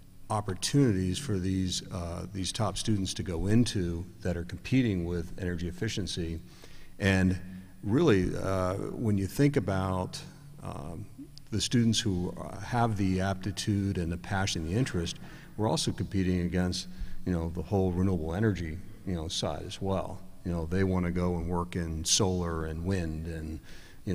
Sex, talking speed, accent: male, 165 wpm, American